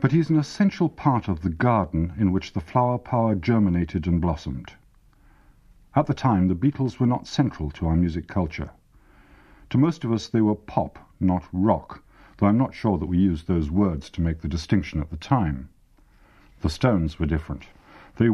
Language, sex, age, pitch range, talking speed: English, male, 50-69, 80-120 Hz, 190 wpm